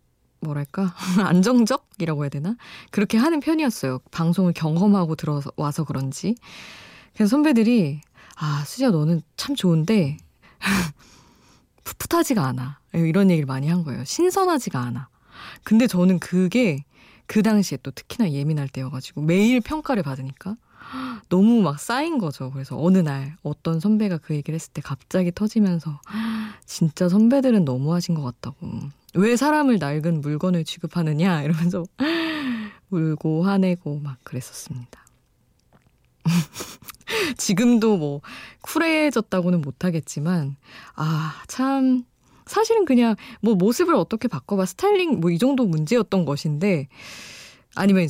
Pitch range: 150-225 Hz